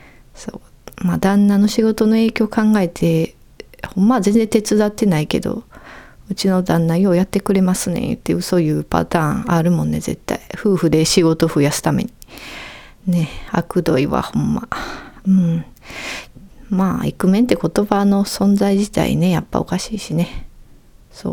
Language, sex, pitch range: Japanese, female, 165-210 Hz